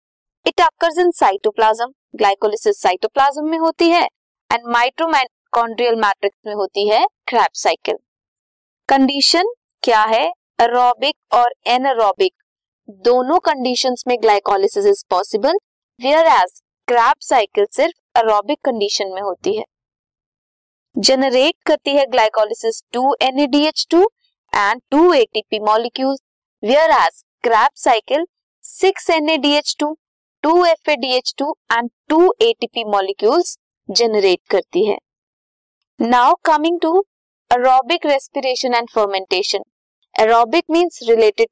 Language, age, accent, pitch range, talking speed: Hindi, 20-39, native, 235-340 Hz, 55 wpm